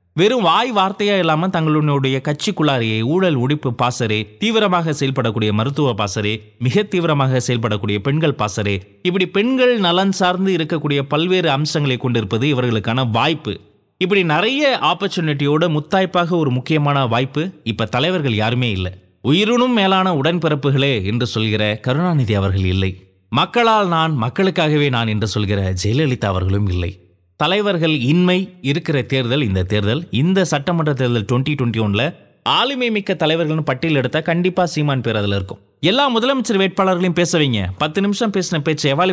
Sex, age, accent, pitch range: male, 30-49, native, 115-175 Hz